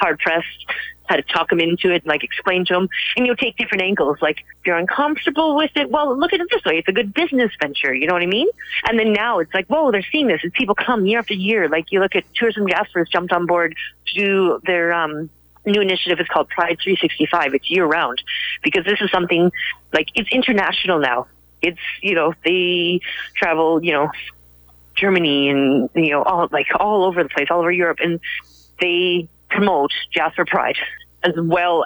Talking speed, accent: 205 wpm, American